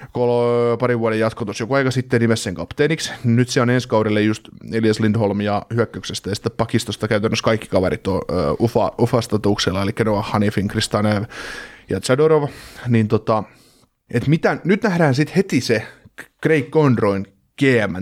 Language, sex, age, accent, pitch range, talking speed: Finnish, male, 30-49, native, 110-155 Hz, 165 wpm